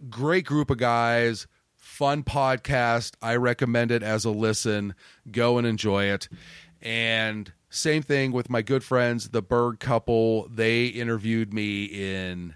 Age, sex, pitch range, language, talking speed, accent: 30-49, male, 100-125 Hz, English, 145 wpm, American